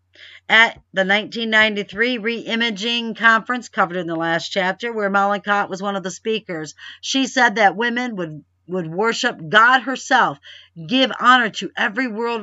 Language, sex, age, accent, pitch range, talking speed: English, female, 50-69, American, 165-215 Hz, 150 wpm